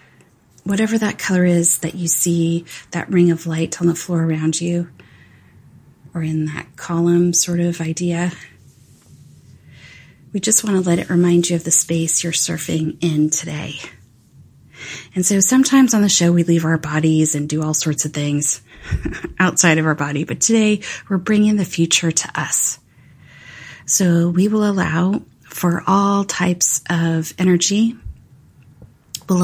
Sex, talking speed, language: female, 155 wpm, English